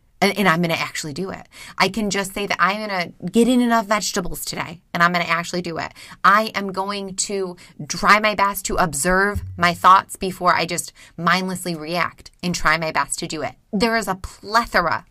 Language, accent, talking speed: English, American, 215 wpm